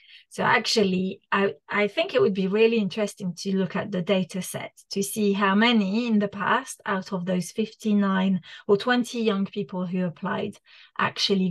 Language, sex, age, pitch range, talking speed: English, female, 30-49, 190-220 Hz, 175 wpm